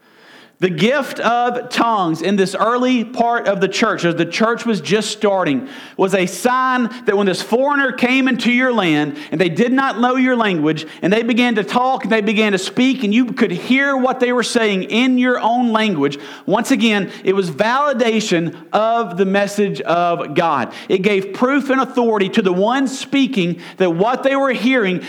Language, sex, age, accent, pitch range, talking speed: English, male, 40-59, American, 190-245 Hz, 195 wpm